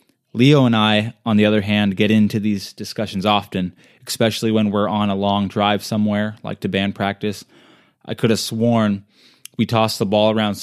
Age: 20-39